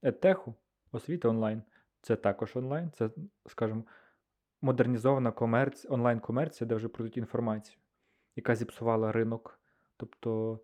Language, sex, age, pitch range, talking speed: Ukrainian, male, 20-39, 115-130 Hz, 105 wpm